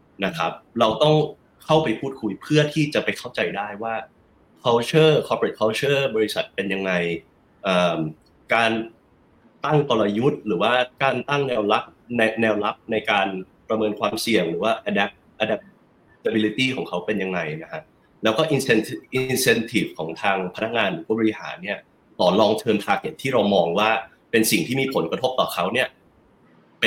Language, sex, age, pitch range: Thai, male, 30-49, 105-130 Hz